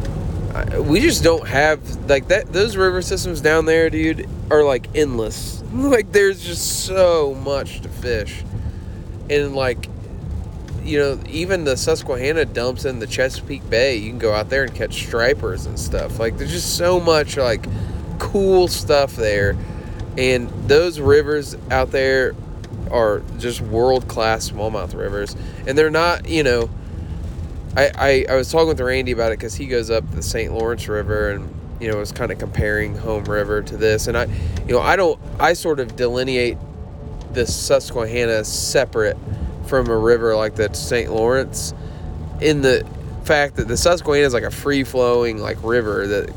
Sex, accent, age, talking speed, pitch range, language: male, American, 20-39, 165 wpm, 100-135 Hz, English